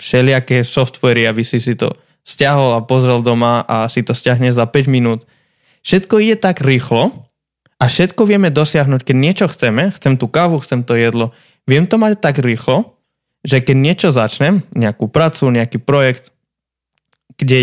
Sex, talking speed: male, 165 wpm